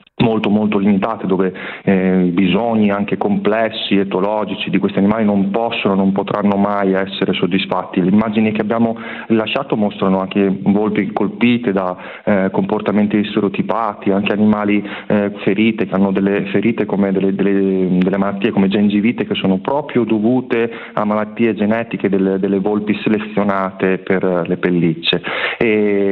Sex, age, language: male, 30-49, Italian